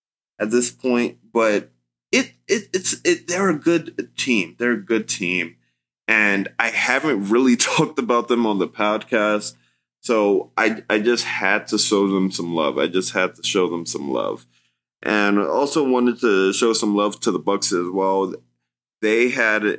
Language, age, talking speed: English, 30-49, 180 wpm